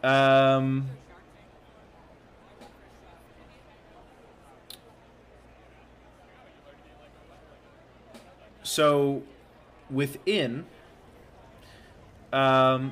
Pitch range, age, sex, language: 105-125 Hz, 20-39, male, English